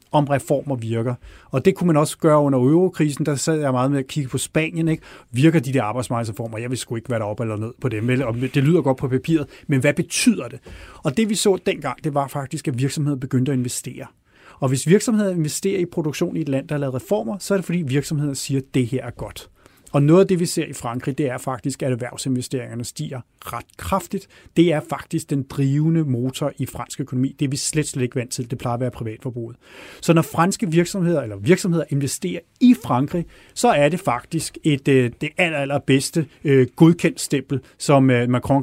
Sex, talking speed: male, 220 wpm